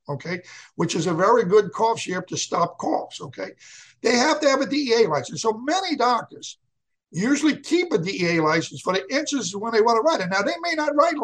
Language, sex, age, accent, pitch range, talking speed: English, male, 60-79, American, 150-225 Hz, 225 wpm